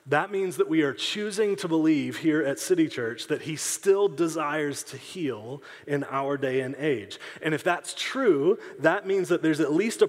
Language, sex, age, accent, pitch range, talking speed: English, male, 30-49, American, 135-190 Hz, 200 wpm